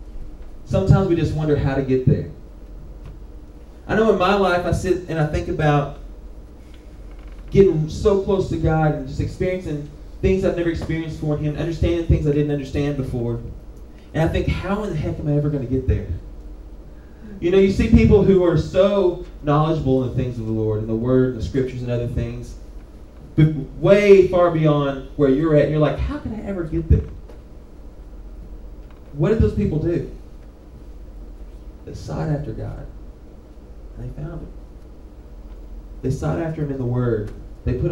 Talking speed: 180 wpm